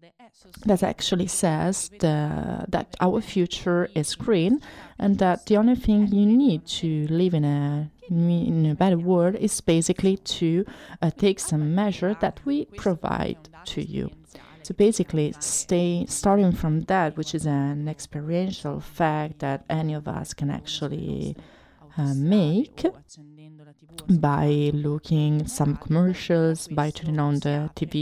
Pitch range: 155-190 Hz